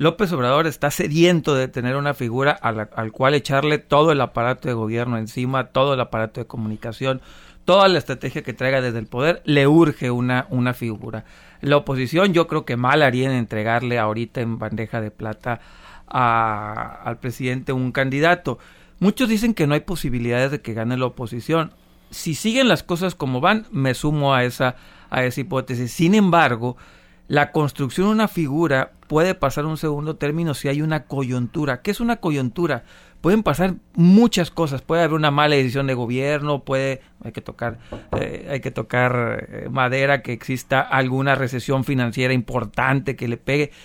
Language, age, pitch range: Spanish, 40-59, 125-165 Hz